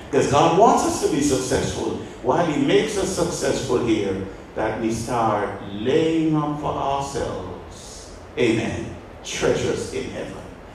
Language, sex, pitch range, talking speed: English, male, 95-115 Hz, 135 wpm